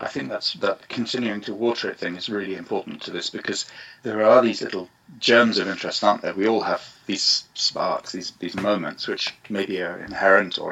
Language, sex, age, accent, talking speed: English, male, 30-49, British, 205 wpm